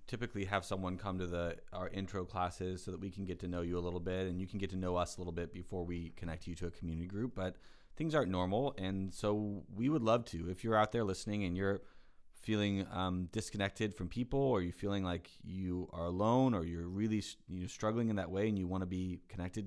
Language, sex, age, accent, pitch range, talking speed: English, male, 30-49, American, 90-105 Hz, 245 wpm